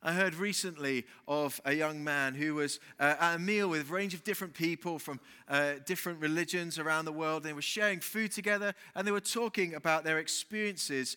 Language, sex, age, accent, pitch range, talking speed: English, male, 30-49, British, 155-205 Hz, 205 wpm